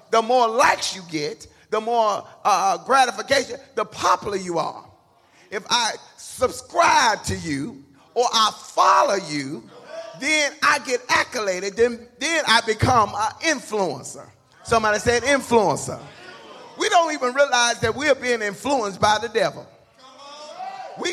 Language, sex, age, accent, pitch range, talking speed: English, male, 40-59, American, 240-335 Hz, 135 wpm